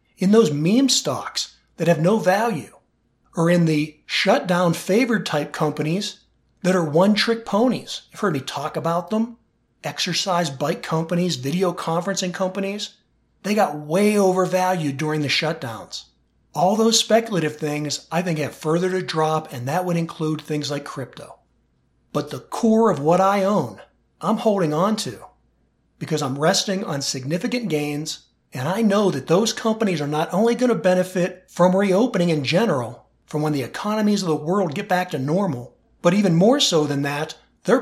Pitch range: 155-195 Hz